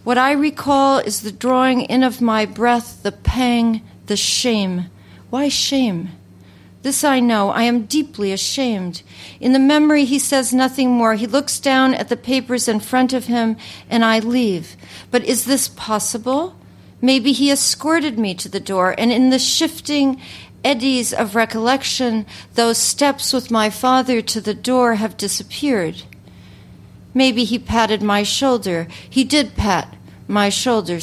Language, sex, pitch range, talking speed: English, female, 205-255 Hz, 155 wpm